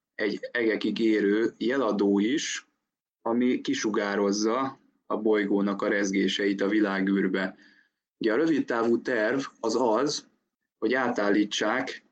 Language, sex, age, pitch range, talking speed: Hungarian, male, 20-39, 100-110 Hz, 110 wpm